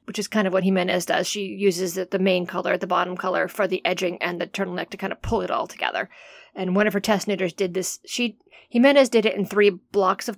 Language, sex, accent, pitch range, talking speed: English, female, American, 185-225 Hz, 255 wpm